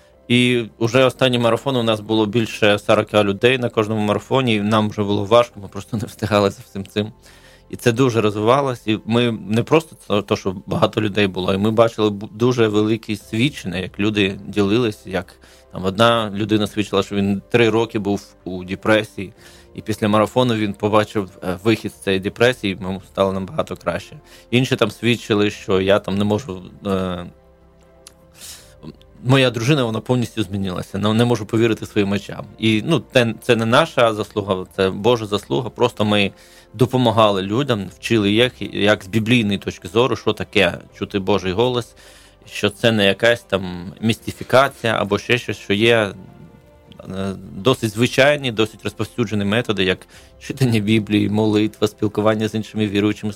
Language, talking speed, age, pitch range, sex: Ukrainian, 155 wpm, 20-39, 100-115 Hz, male